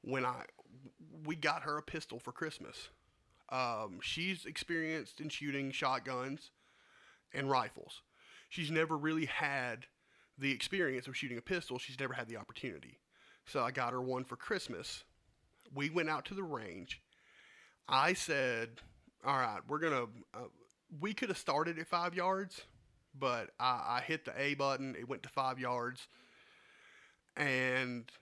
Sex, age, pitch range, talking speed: male, 30-49, 135-195 Hz, 155 wpm